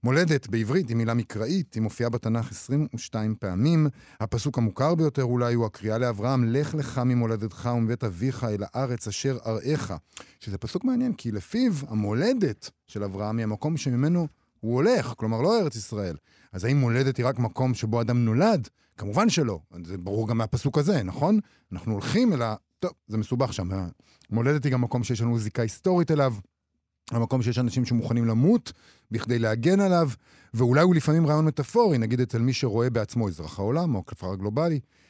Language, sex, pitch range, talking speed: Hebrew, male, 110-140 Hz, 170 wpm